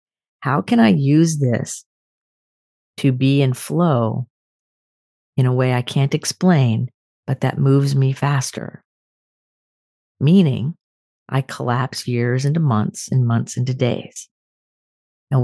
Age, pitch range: 40-59, 120-145 Hz